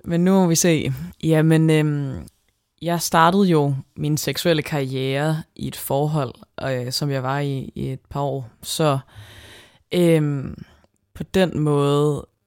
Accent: native